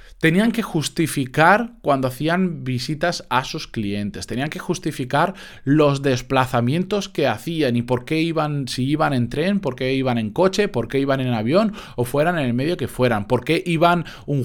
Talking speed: 185 wpm